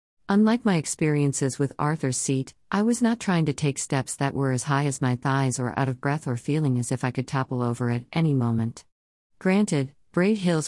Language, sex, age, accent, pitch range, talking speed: English, female, 50-69, American, 130-160 Hz, 215 wpm